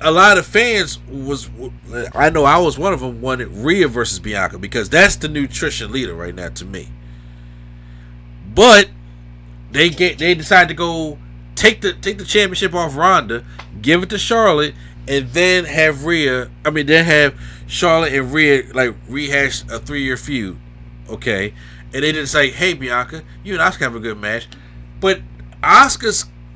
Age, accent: 30-49, American